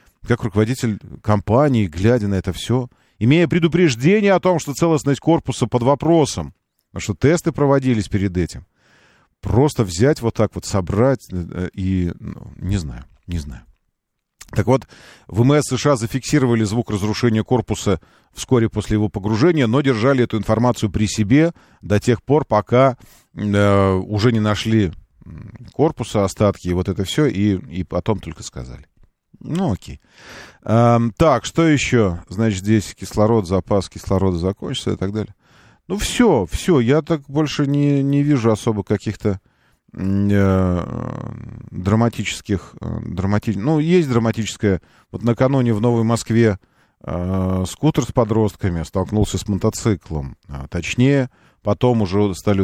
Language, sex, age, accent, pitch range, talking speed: Russian, male, 40-59, native, 95-125 Hz, 130 wpm